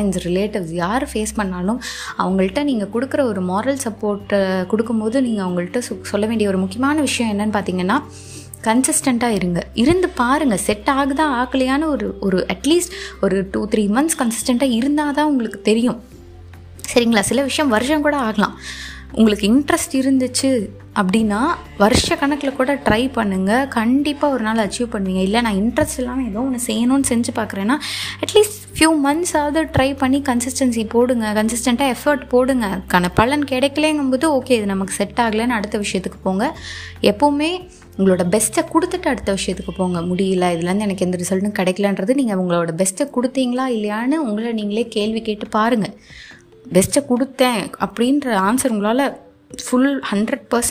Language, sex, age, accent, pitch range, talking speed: Tamil, female, 20-39, native, 200-270 Hz, 70 wpm